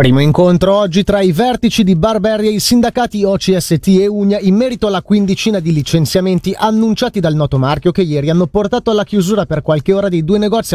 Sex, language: male, Italian